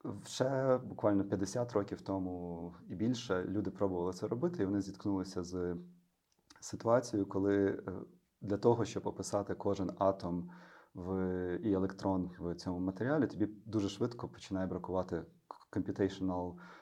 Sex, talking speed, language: male, 125 wpm, Ukrainian